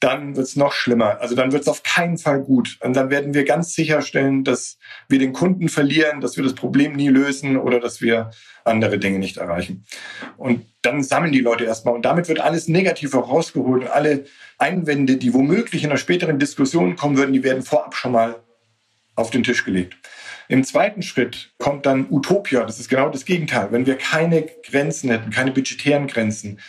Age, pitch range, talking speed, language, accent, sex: 40-59, 120-150 Hz, 200 wpm, German, German, male